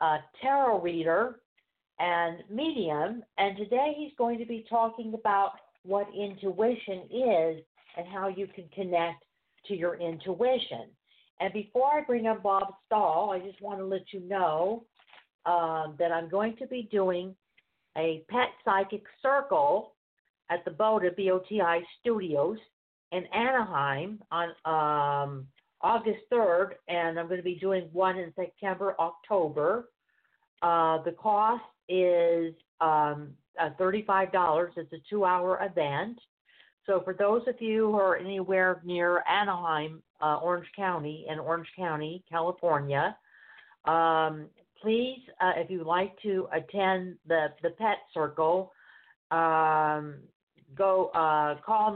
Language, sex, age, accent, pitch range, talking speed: English, female, 50-69, American, 165-210 Hz, 135 wpm